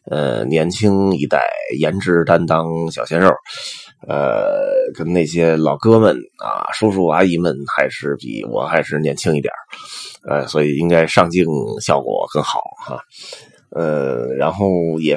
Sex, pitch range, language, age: male, 80-110 Hz, Chinese, 20-39